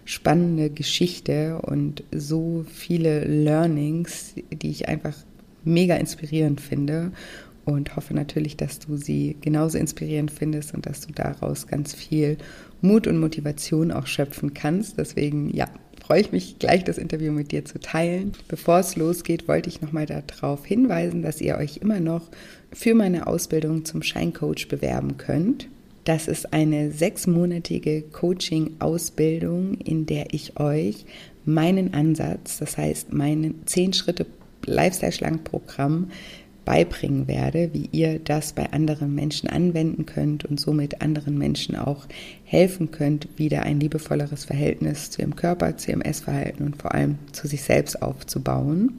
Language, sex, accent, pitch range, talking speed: German, female, German, 145-170 Hz, 140 wpm